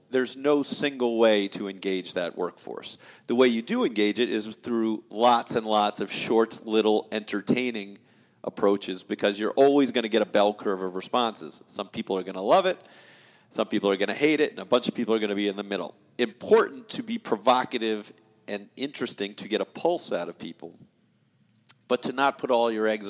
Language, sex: English, male